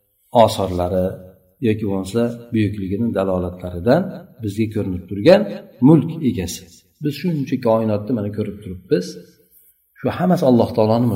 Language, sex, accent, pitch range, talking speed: Russian, male, Turkish, 100-140 Hz, 95 wpm